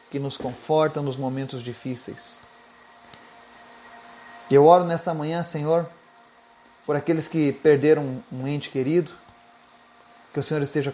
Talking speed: 125 wpm